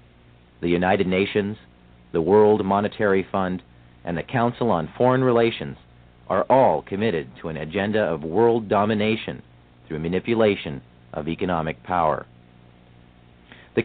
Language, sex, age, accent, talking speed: English, male, 40-59, American, 120 wpm